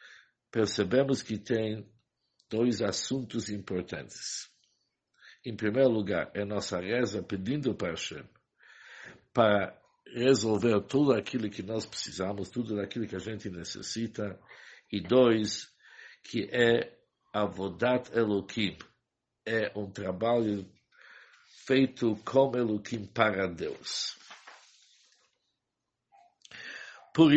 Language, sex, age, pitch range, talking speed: English, male, 60-79, 100-125 Hz, 100 wpm